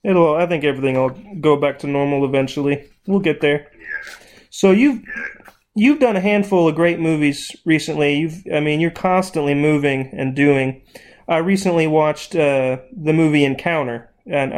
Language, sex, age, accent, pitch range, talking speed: English, male, 30-49, American, 140-160 Hz, 155 wpm